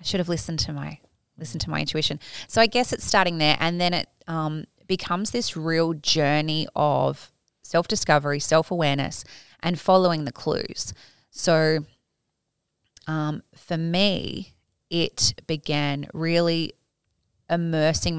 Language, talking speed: English, 130 wpm